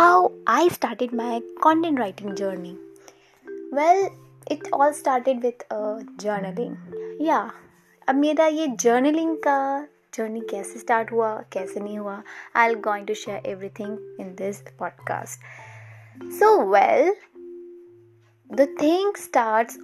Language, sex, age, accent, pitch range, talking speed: Hindi, female, 20-39, native, 210-275 Hz, 125 wpm